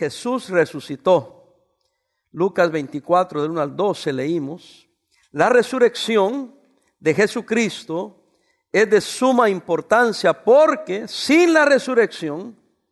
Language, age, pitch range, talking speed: English, 50-69, 170-255 Hz, 100 wpm